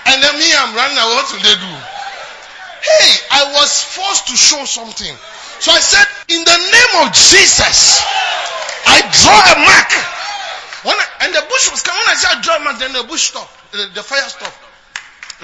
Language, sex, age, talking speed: English, male, 30-49, 200 wpm